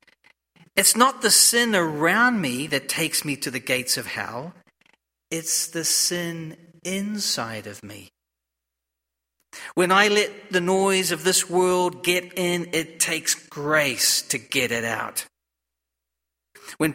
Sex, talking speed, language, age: male, 135 wpm, English, 40-59